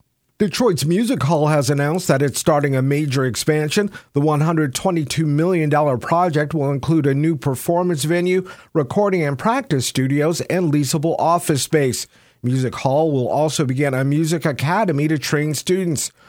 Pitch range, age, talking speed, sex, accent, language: 135-165 Hz, 50-69, 145 wpm, male, American, English